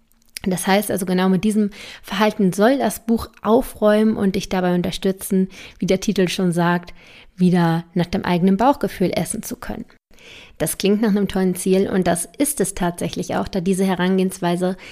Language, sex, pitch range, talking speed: German, female, 185-220 Hz, 175 wpm